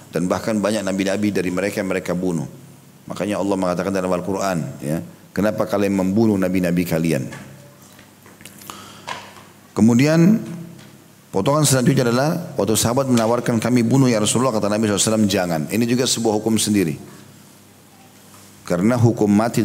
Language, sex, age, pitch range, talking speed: Indonesian, male, 40-59, 100-125 Hz, 130 wpm